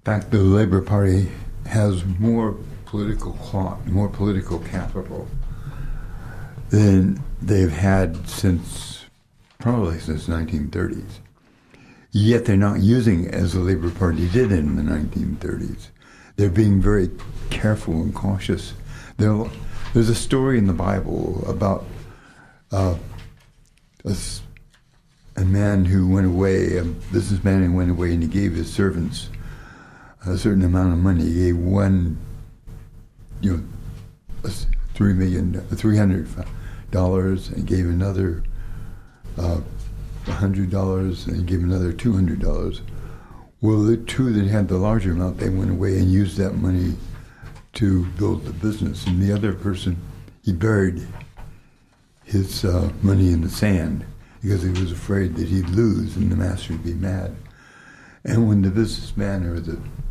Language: English